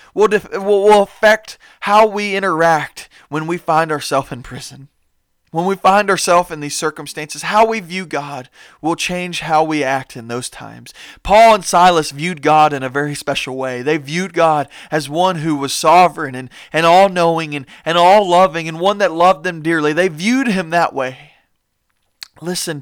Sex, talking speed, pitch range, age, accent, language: male, 180 wpm, 140-175 Hz, 30-49, American, English